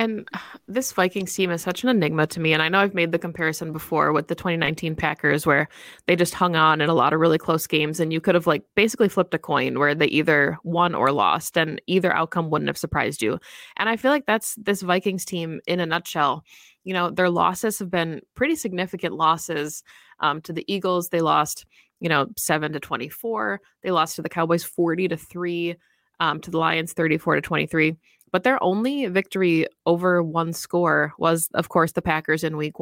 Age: 20-39